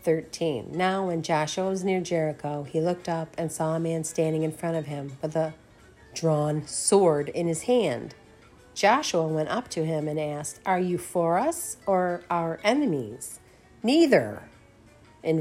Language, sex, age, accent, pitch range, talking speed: English, female, 50-69, American, 150-190 Hz, 165 wpm